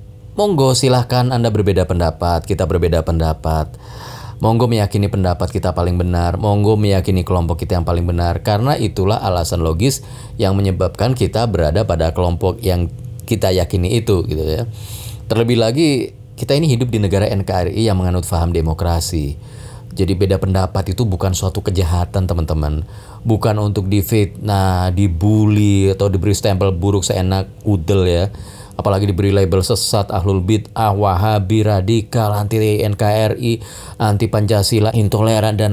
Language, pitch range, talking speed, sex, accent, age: Indonesian, 95-115 Hz, 135 wpm, male, native, 20-39